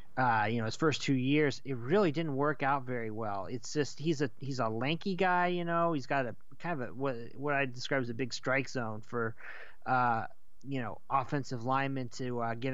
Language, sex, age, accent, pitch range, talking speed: English, male, 20-39, American, 125-155 Hz, 225 wpm